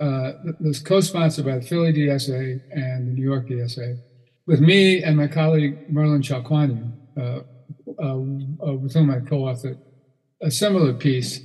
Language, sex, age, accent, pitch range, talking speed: English, male, 50-69, American, 125-155 Hz, 145 wpm